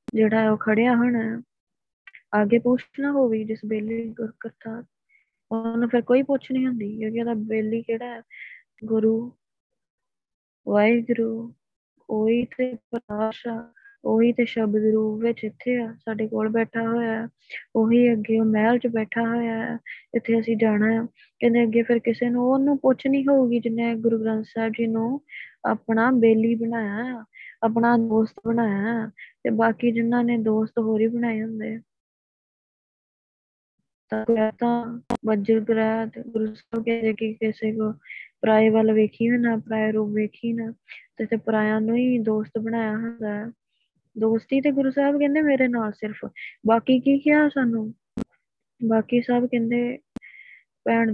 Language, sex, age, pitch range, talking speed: Punjabi, female, 20-39, 220-240 Hz, 120 wpm